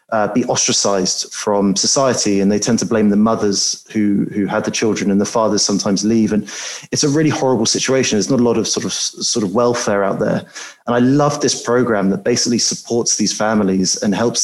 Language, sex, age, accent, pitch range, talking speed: English, male, 30-49, British, 100-120 Hz, 215 wpm